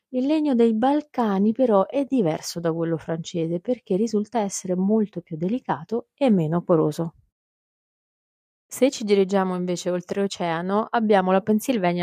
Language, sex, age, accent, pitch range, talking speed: Italian, female, 30-49, native, 170-210 Hz, 135 wpm